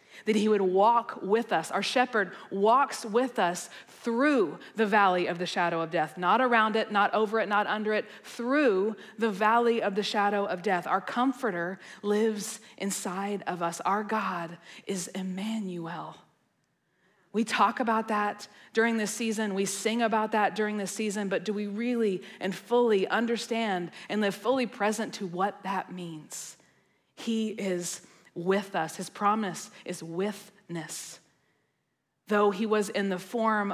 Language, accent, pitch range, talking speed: English, American, 190-225 Hz, 160 wpm